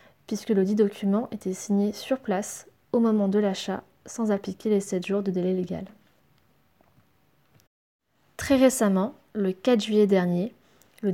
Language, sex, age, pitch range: French, female, 20-39, 195-225 Hz